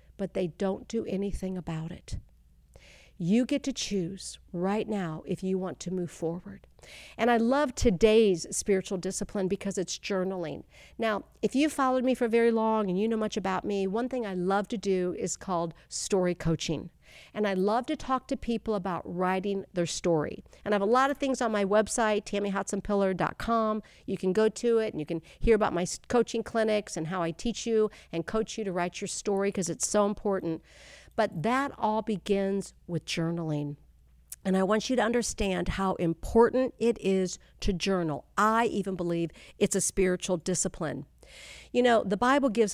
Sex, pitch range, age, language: female, 180-225 Hz, 50-69, English